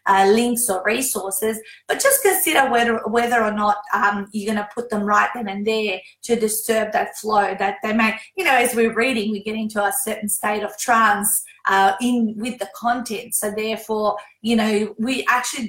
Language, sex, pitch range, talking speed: English, female, 200-235 Hz, 200 wpm